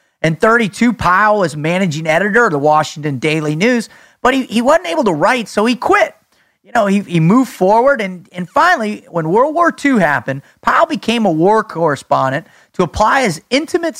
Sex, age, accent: male, 30-49, American